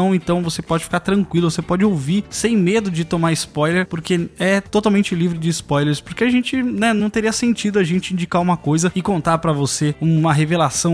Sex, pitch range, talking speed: male, 155-195 Hz, 205 wpm